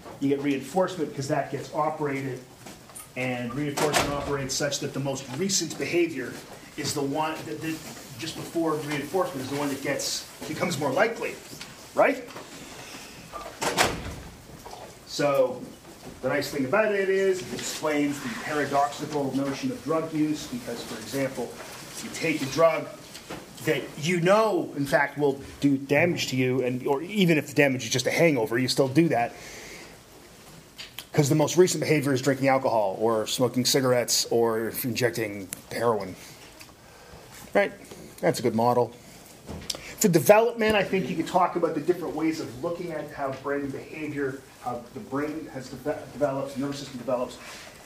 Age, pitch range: 30-49, 135-160 Hz